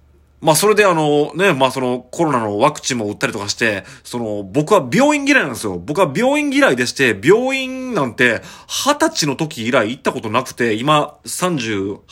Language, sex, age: Japanese, male, 30-49